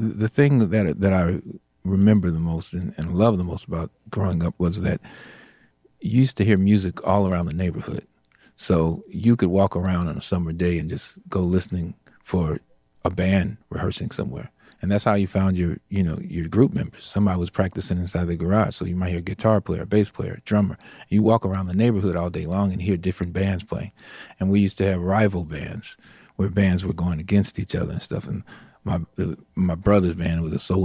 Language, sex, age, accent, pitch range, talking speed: English, male, 40-59, American, 90-100 Hz, 220 wpm